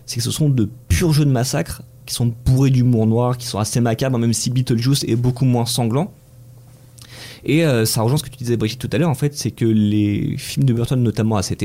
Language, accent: French, French